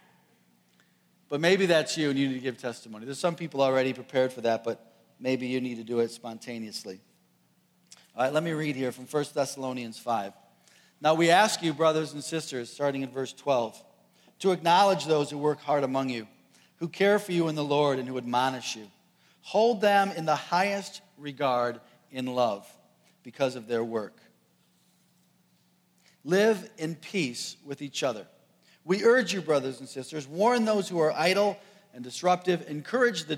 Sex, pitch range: male, 135-190 Hz